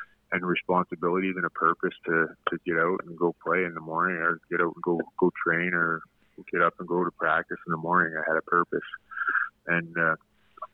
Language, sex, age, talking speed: English, male, 20-39, 210 wpm